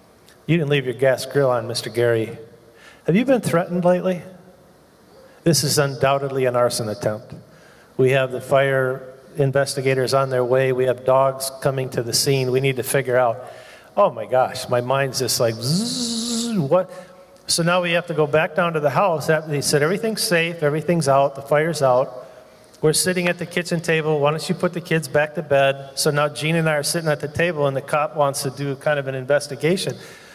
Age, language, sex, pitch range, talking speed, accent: 40-59, English, male, 135-165 Hz, 205 wpm, American